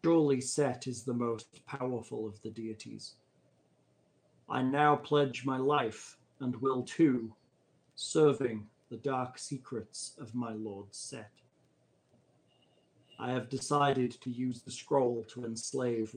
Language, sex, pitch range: English, male, 115-140 Hz